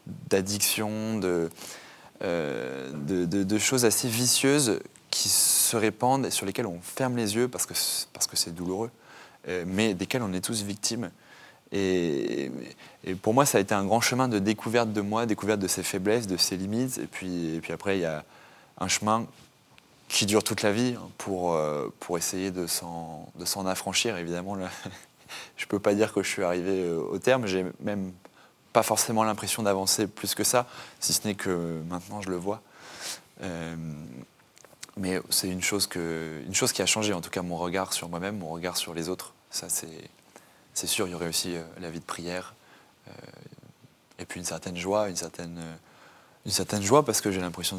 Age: 20-39